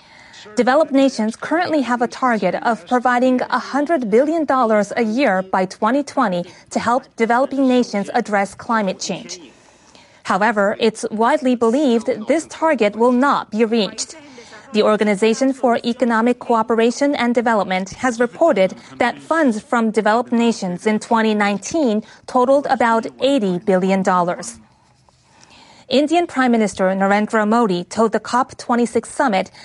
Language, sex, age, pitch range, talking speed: English, female, 30-49, 205-255 Hz, 120 wpm